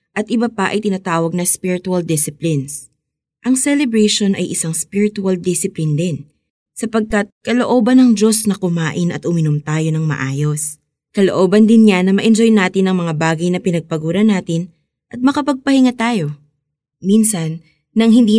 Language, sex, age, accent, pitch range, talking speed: Filipino, female, 20-39, native, 155-210 Hz, 145 wpm